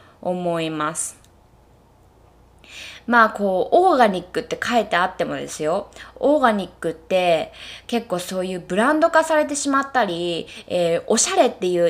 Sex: female